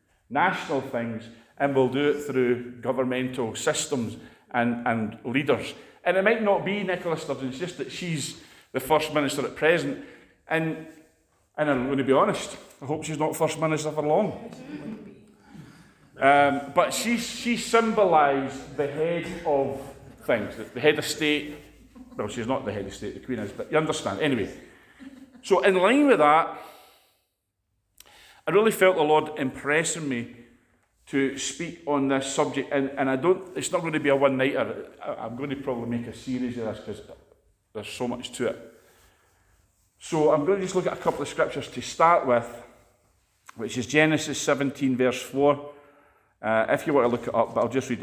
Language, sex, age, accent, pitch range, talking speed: English, male, 40-59, British, 120-160 Hz, 180 wpm